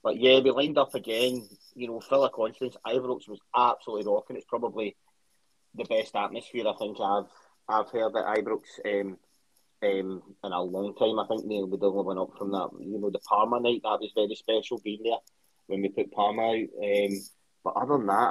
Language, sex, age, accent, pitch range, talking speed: English, male, 20-39, British, 100-125 Hz, 210 wpm